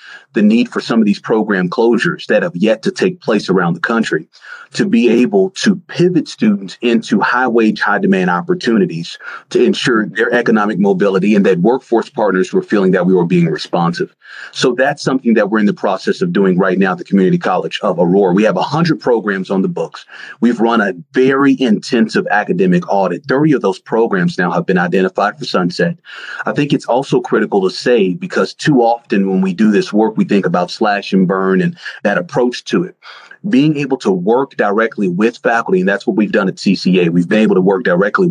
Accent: American